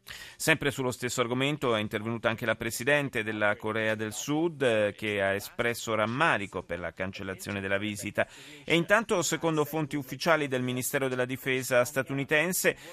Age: 40-59